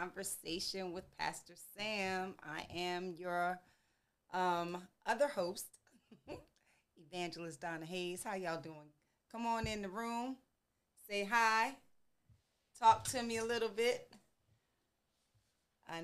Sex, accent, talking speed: female, American, 110 wpm